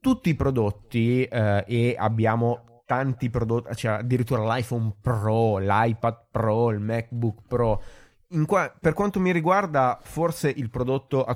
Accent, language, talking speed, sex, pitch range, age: native, Italian, 145 wpm, male, 110-135 Hz, 20-39